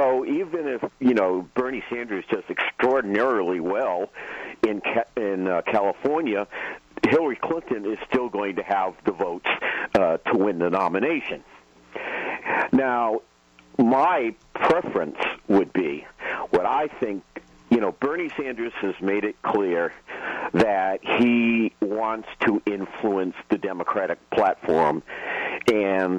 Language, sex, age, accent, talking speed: English, male, 50-69, American, 115 wpm